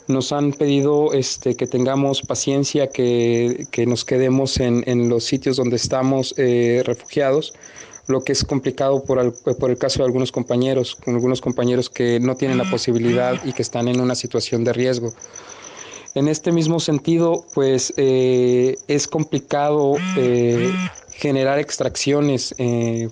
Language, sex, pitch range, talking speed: Spanish, male, 125-140 Hz, 155 wpm